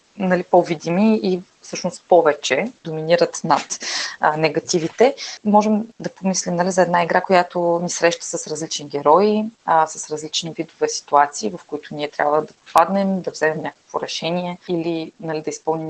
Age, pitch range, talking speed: 20-39, 160-185 Hz, 155 wpm